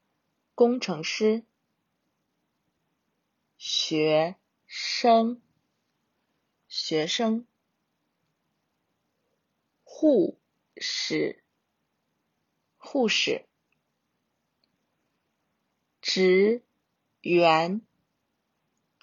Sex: female